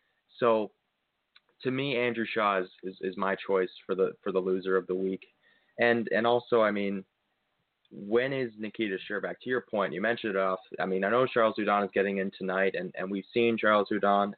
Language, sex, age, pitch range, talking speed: English, male, 20-39, 95-115 Hz, 210 wpm